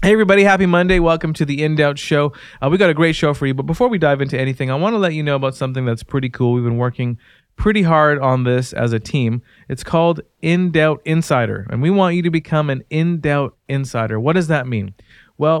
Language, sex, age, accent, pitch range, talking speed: English, male, 30-49, American, 120-150 Hz, 250 wpm